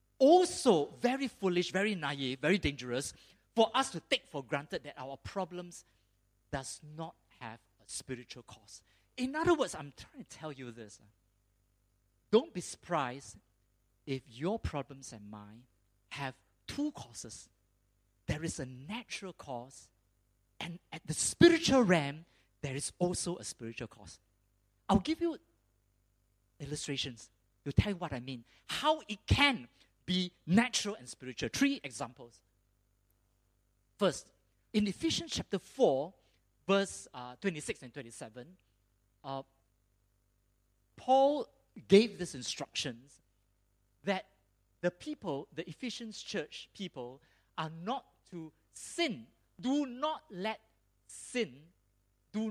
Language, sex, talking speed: English, male, 125 wpm